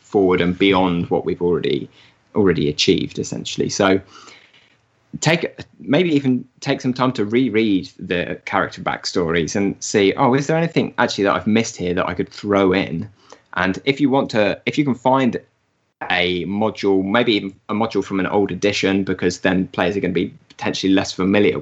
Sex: male